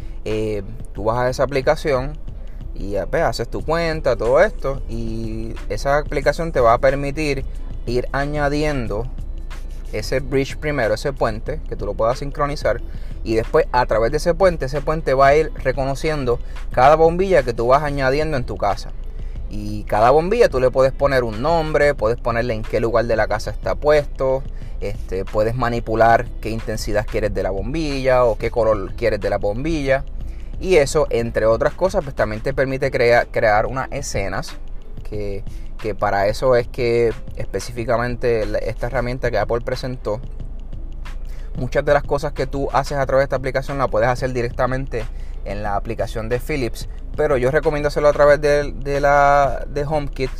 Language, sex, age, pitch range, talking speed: Spanish, male, 30-49, 110-140 Hz, 170 wpm